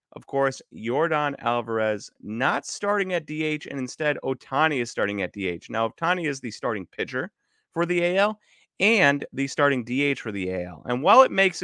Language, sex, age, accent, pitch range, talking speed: English, male, 30-49, American, 115-155 Hz, 180 wpm